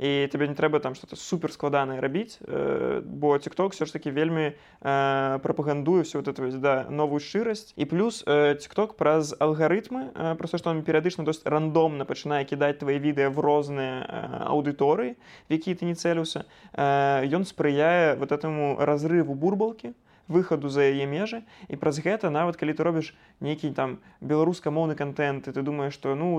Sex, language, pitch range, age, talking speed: male, Russian, 140-165 Hz, 20-39, 160 wpm